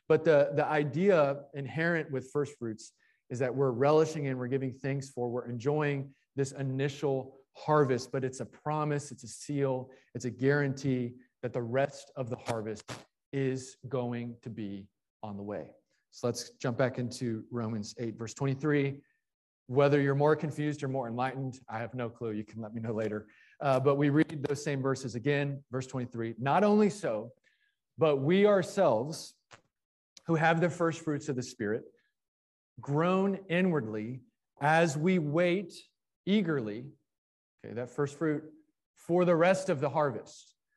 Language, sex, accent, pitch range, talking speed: English, male, American, 125-160 Hz, 165 wpm